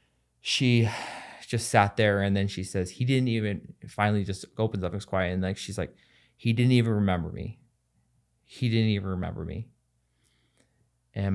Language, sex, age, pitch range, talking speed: English, male, 20-39, 85-105 Hz, 170 wpm